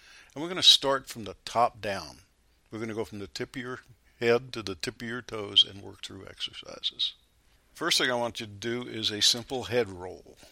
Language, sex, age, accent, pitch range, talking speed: English, male, 60-79, American, 105-120 Hz, 235 wpm